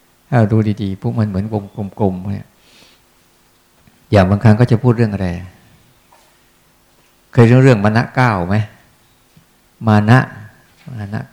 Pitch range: 100-125 Hz